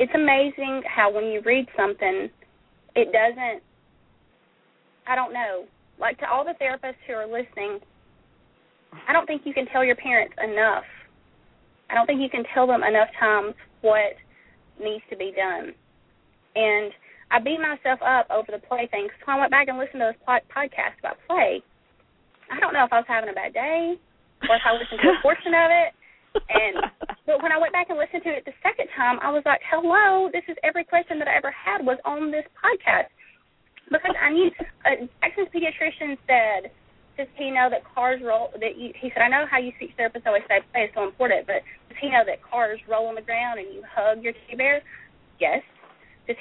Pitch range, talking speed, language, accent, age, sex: 230-325 Hz, 205 wpm, English, American, 30-49, female